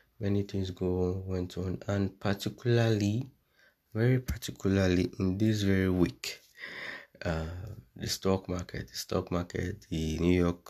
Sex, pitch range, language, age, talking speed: male, 85-100 Hz, English, 20-39, 135 wpm